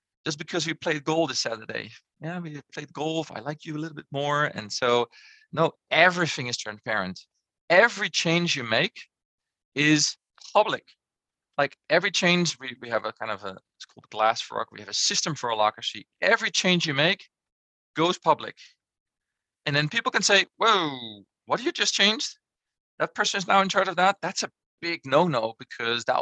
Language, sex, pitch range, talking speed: English, male, 120-175 Hz, 190 wpm